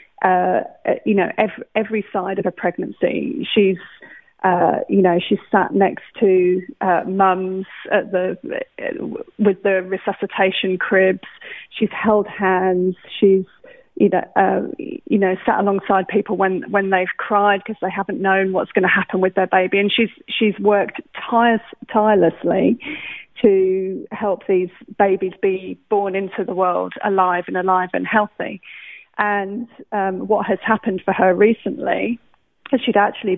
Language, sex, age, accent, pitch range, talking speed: English, female, 30-49, British, 185-220 Hz, 145 wpm